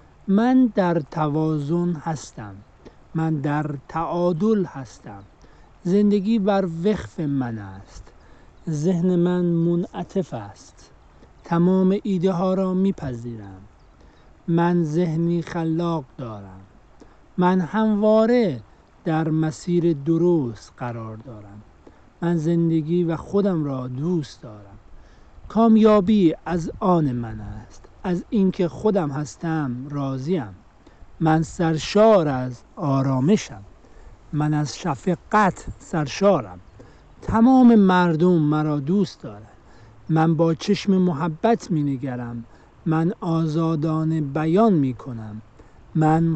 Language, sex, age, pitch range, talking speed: Persian, male, 60-79, 130-195 Hz, 95 wpm